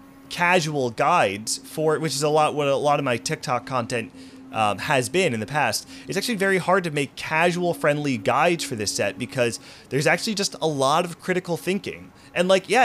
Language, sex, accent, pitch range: English, male, American, 120-165 Hz